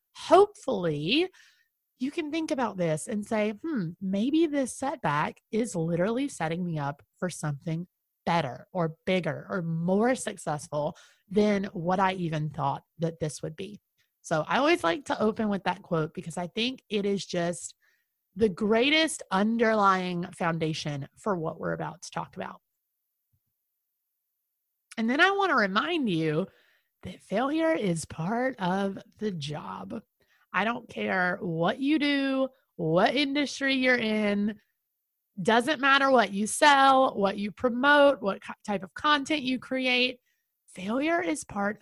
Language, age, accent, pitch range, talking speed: English, 30-49, American, 180-270 Hz, 145 wpm